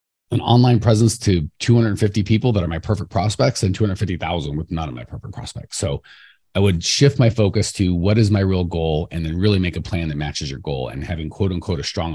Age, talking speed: 30-49, 230 wpm